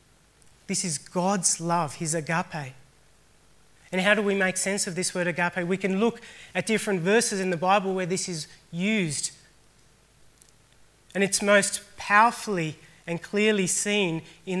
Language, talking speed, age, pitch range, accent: English, 150 wpm, 30-49, 155-195 Hz, Australian